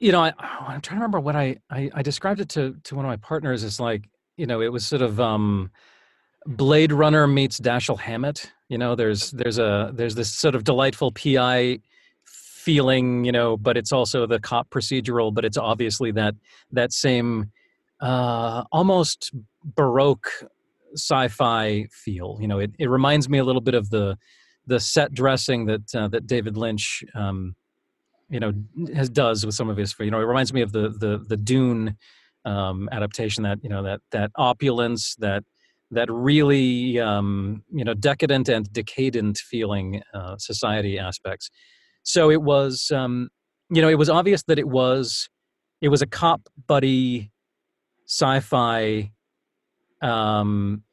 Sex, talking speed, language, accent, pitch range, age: male, 165 wpm, English, American, 110-140 Hz, 30-49